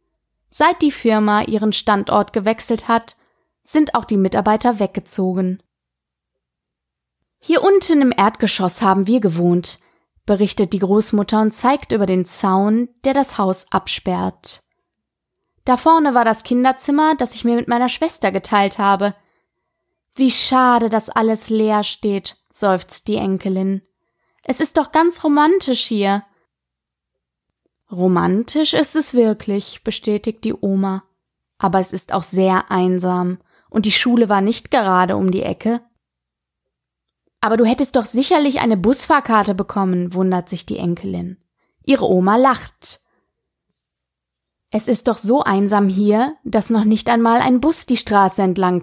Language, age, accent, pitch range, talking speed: German, 20-39, German, 185-245 Hz, 135 wpm